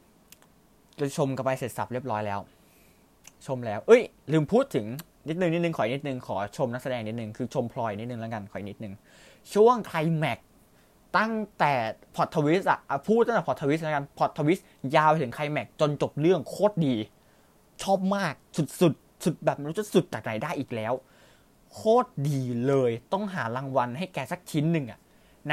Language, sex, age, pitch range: Thai, male, 20-39, 125-170 Hz